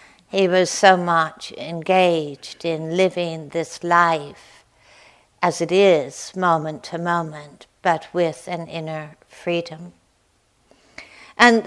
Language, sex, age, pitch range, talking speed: English, female, 60-79, 170-210 Hz, 110 wpm